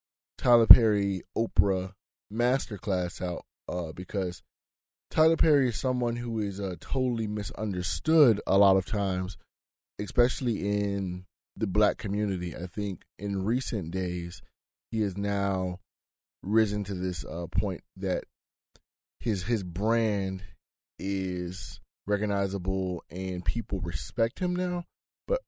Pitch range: 85-105 Hz